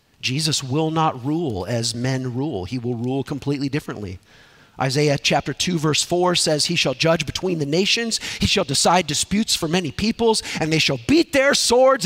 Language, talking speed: English, 185 wpm